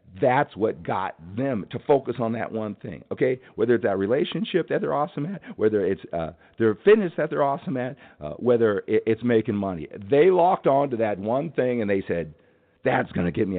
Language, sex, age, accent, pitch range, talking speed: English, male, 50-69, American, 105-140 Hz, 210 wpm